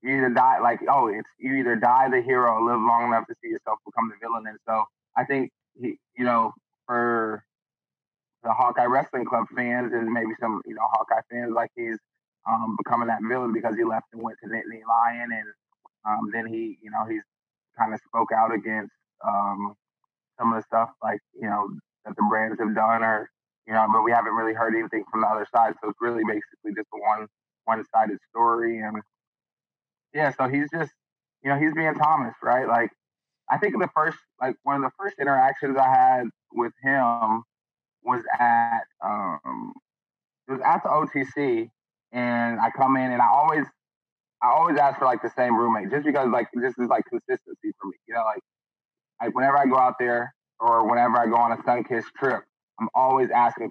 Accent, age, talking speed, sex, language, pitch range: American, 20-39, 200 wpm, male, English, 110-130 Hz